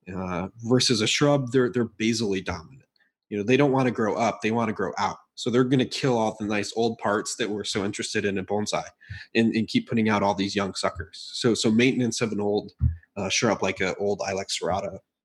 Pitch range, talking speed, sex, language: 100-120 Hz, 235 wpm, male, English